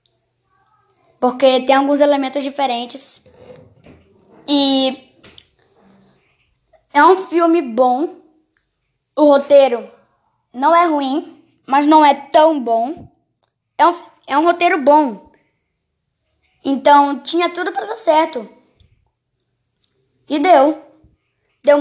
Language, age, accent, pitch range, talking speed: Portuguese, 10-29, Brazilian, 245-310 Hz, 95 wpm